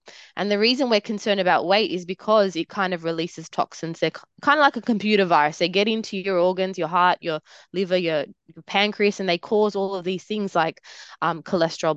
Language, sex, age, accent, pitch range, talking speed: English, female, 20-39, Australian, 170-210 Hz, 215 wpm